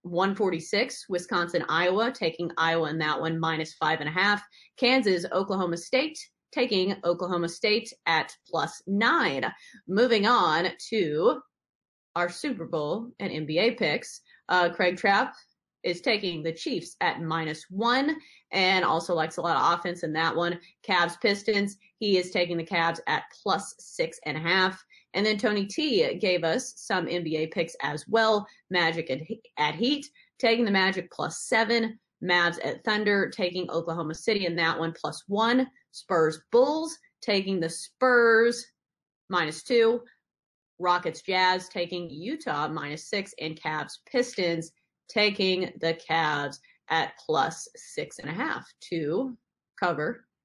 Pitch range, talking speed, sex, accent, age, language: 170-230 Hz, 140 wpm, female, American, 30-49, English